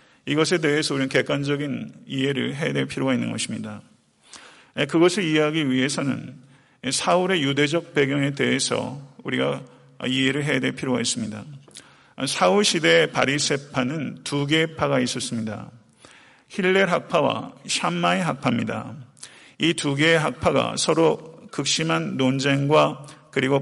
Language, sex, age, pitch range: Korean, male, 40-59, 135-165 Hz